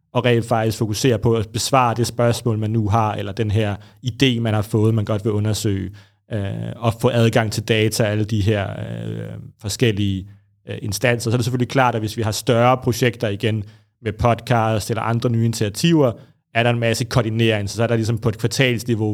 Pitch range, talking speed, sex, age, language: 110-120 Hz, 205 wpm, male, 30-49, Danish